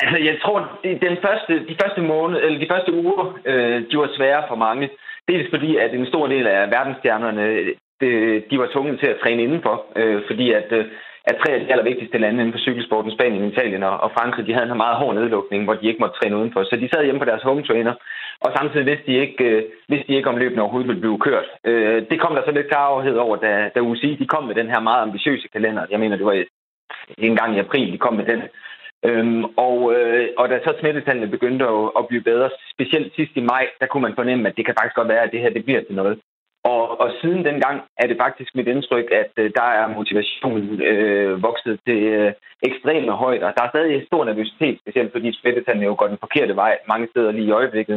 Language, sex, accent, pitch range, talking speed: Danish, male, native, 110-145 Hz, 230 wpm